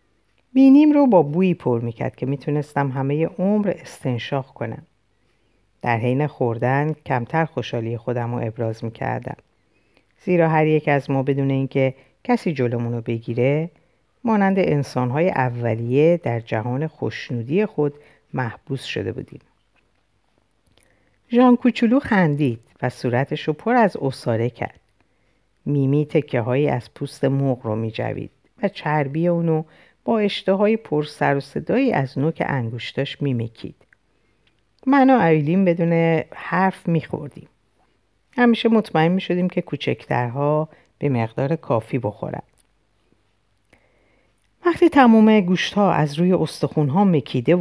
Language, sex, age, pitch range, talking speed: Persian, female, 50-69, 125-175 Hz, 120 wpm